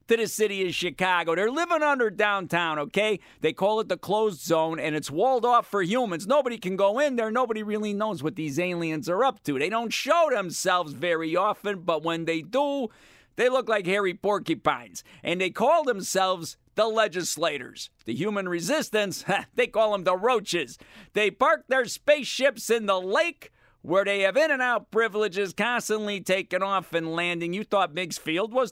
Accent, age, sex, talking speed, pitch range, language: American, 50-69, male, 185 wpm, 170-235 Hz, English